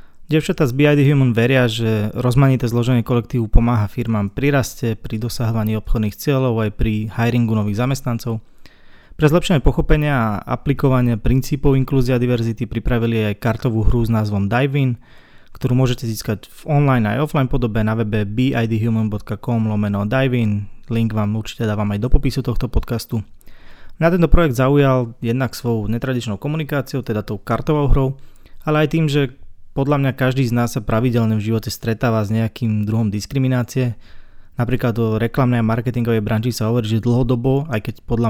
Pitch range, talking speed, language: 110-130 Hz, 160 wpm, Slovak